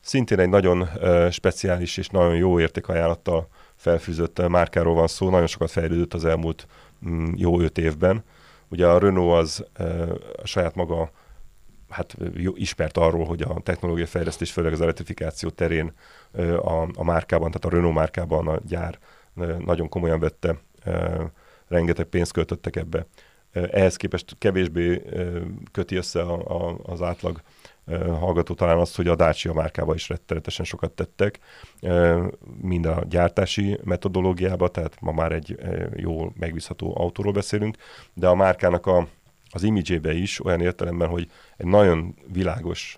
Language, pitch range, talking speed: Hungarian, 85-90 Hz, 135 wpm